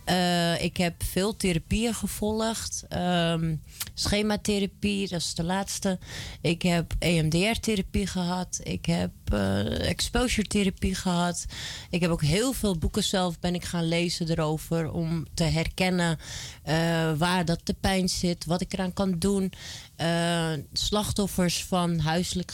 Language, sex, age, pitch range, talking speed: Dutch, female, 30-49, 165-190 Hz, 130 wpm